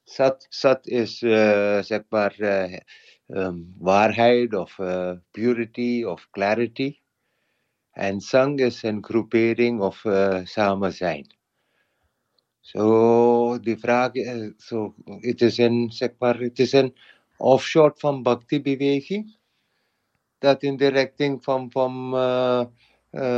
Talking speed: 110 wpm